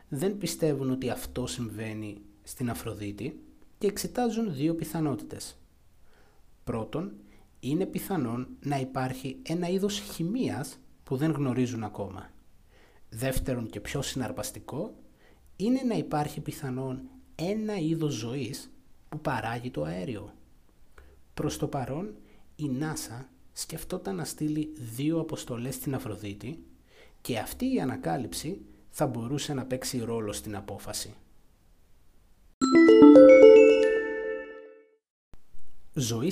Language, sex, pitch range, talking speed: Greek, male, 105-165 Hz, 100 wpm